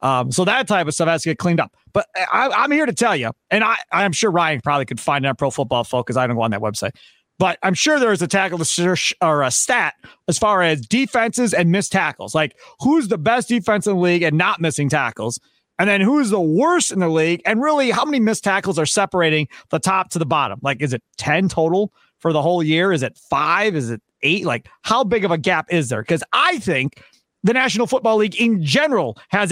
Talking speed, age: 245 wpm, 30-49